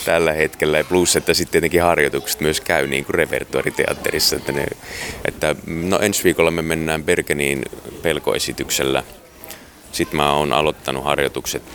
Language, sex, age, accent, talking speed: Finnish, male, 30-49, native, 145 wpm